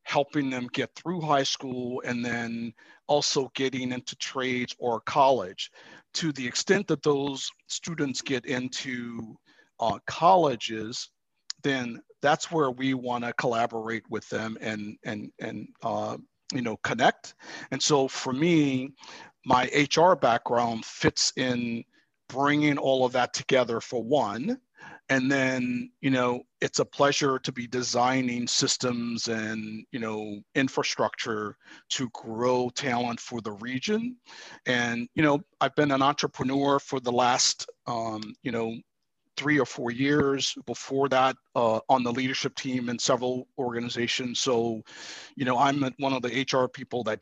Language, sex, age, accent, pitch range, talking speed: English, male, 50-69, American, 120-140 Hz, 145 wpm